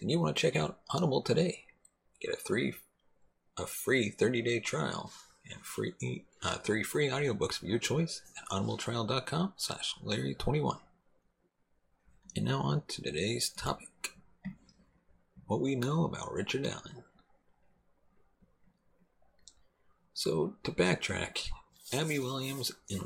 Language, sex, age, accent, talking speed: English, male, 40-59, American, 115 wpm